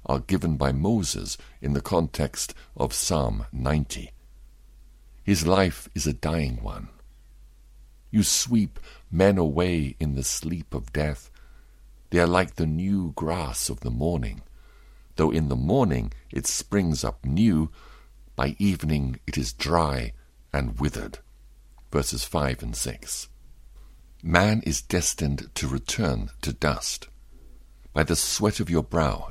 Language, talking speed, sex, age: English, 135 wpm, male, 60-79